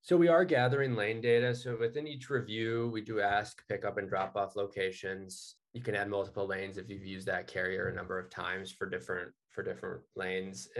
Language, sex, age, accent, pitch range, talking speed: English, male, 20-39, American, 95-120 Hz, 200 wpm